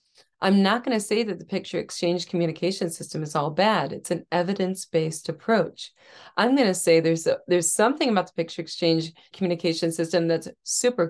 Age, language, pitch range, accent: 30-49, English, 165-200 Hz, American